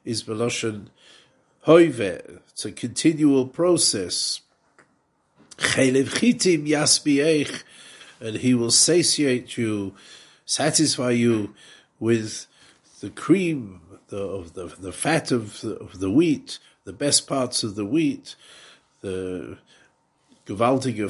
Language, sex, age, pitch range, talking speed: English, male, 50-69, 110-140 Hz, 100 wpm